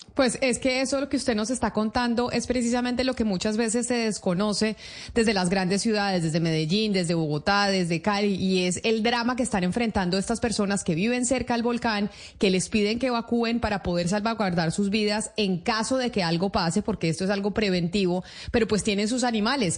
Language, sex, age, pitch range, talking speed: Spanish, female, 30-49, 190-230 Hz, 205 wpm